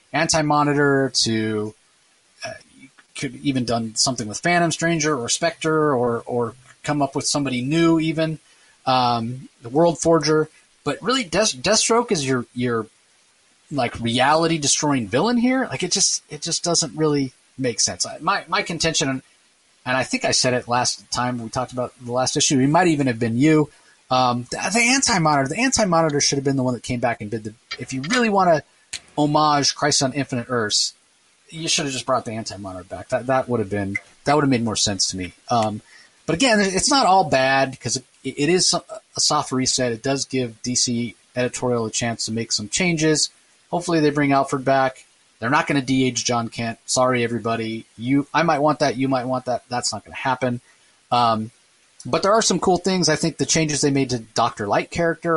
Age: 30-49